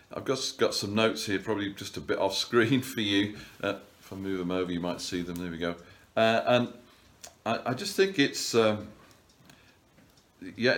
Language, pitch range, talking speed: English, 95-125 Hz, 205 wpm